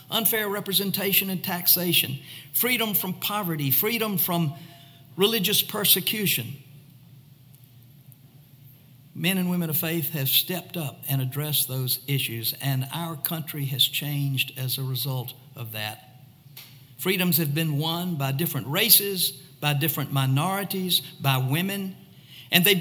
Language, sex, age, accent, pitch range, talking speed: English, male, 60-79, American, 135-170 Hz, 125 wpm